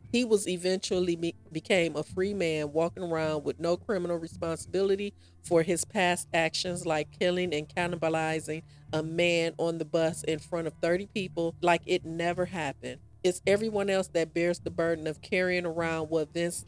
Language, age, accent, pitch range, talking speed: English, 40-59, American, 155-185 Hz, 170 wpm